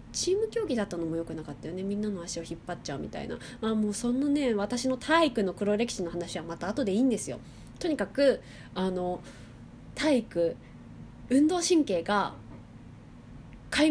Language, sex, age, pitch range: Japanese, female, 20-39, 175-265 Hz